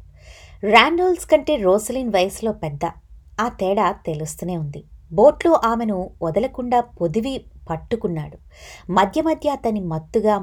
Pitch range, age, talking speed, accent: 160-245 Hz, 20-39, 105 wpm, native